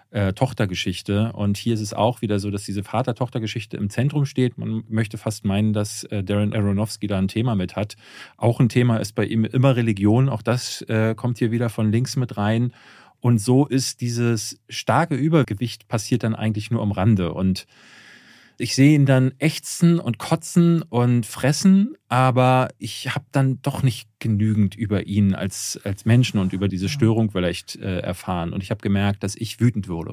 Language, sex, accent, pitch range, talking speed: German, male, German, 100-125 Hz, 185 wpm